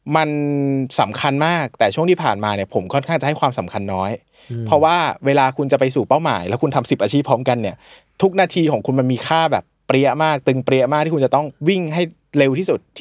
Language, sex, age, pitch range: Thai, male, 20-39, 125-160 Hz